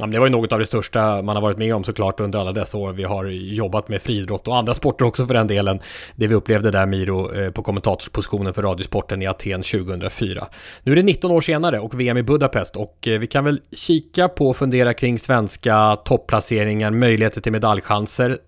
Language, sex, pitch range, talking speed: English, male, 105-130 Hz, 210 wpm